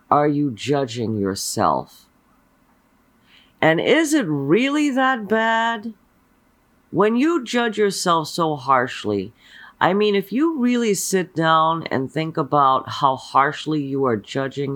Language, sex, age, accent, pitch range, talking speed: English, female, 40-59, American, 130-170 Hz, 125 wpm